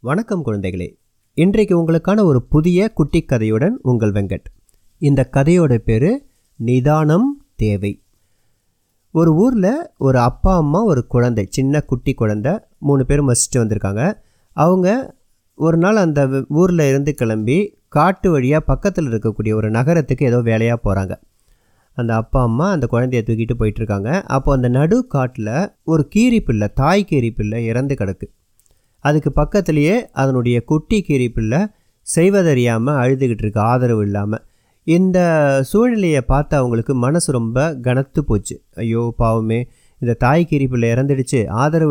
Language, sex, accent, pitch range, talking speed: Tamil, male, native, 115-155 Hz, 125 wpm